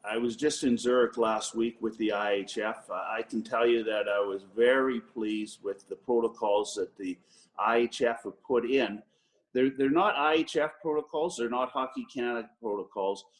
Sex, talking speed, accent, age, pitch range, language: male, 175 wpm, American, 50-69, 110-145 Hz, English